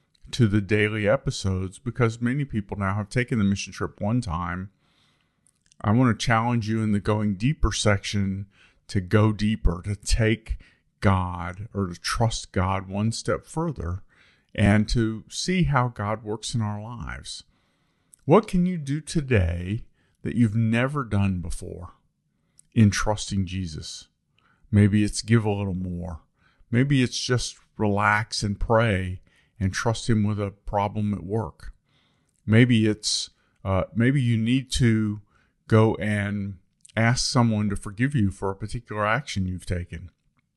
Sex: male